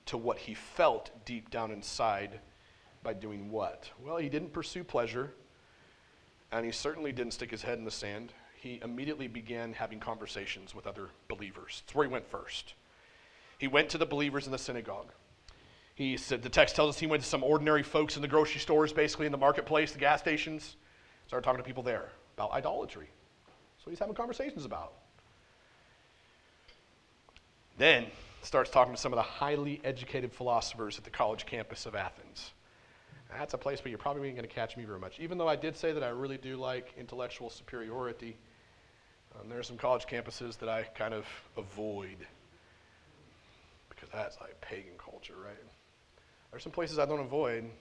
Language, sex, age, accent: English, male, 40-59, American